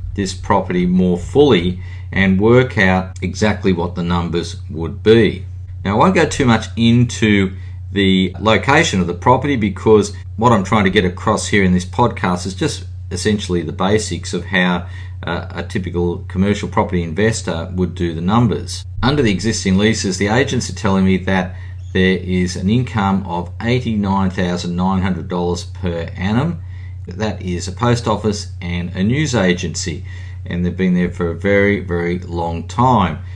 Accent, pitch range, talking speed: Australian, 90-105 Hz, 160 wpm